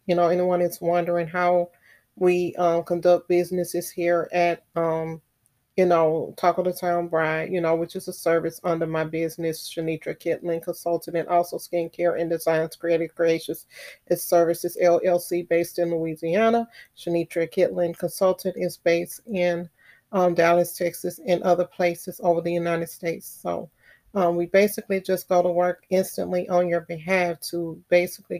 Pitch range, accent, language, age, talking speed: 170-185 Hz, American, English, 30-49, 155 wpm